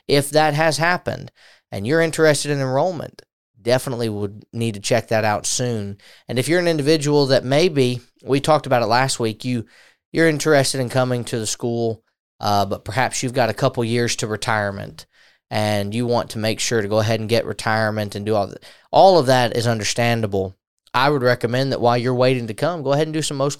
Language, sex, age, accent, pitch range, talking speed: English, male, 20-39, American, 110-135 Hz, 215 wpm